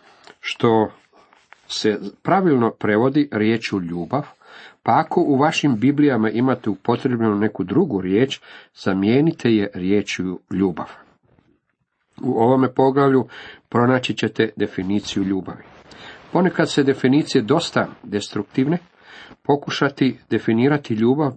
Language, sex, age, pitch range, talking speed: Croatian, male, 50-69, 105-145 Hz, 100 wpm